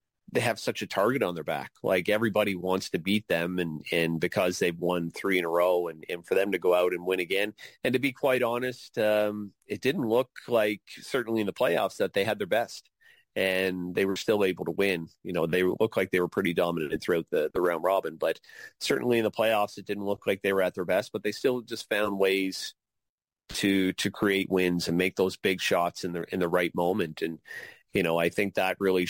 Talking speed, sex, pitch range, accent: 235 wpm, male, 95-110 Hz, American